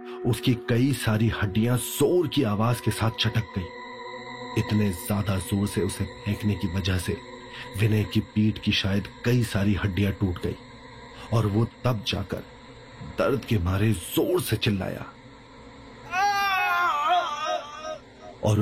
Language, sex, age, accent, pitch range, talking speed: Hindi, male, 40-59, native, 95-120 Hz, 130 wpm